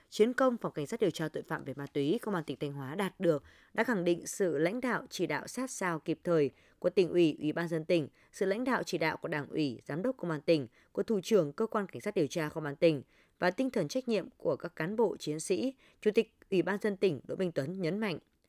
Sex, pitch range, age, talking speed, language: female, 155-215 Hz, 20-39, 275 wpm, Vietnamese